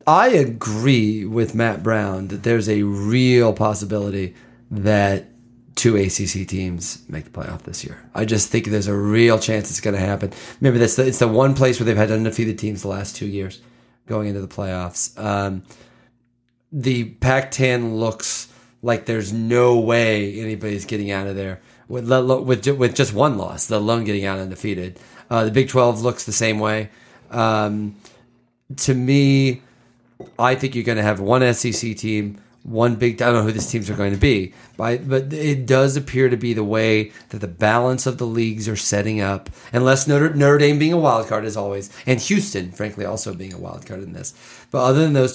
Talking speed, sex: 195 wpm, male